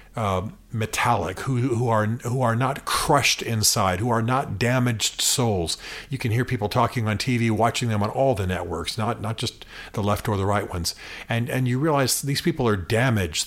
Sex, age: male, 50-69